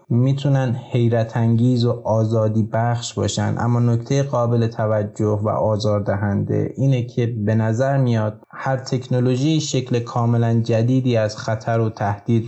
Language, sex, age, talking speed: Persian, male, 20-39, 130 wpm